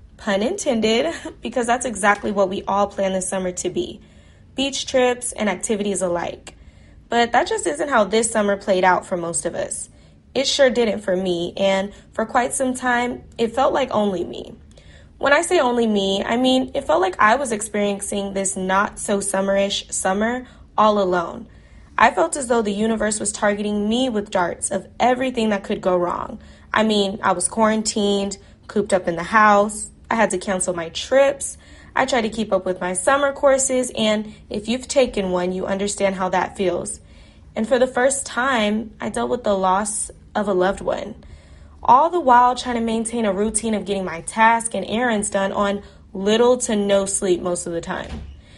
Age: 10-29